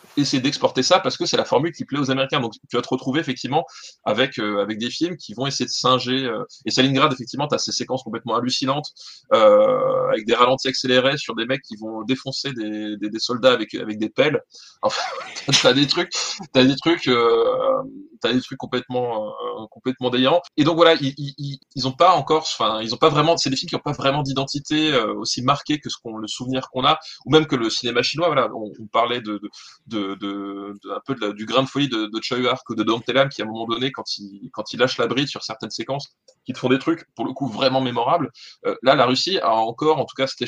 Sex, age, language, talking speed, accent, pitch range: male, 20-39, French, 250 wpm, French, 110-140 Hz